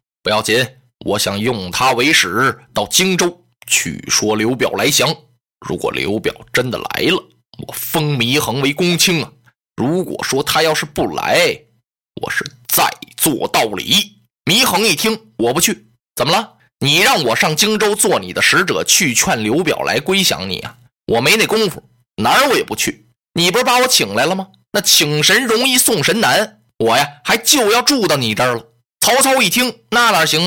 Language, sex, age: Chinese, male, 20-39